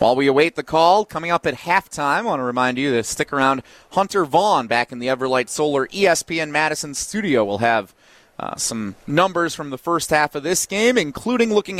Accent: American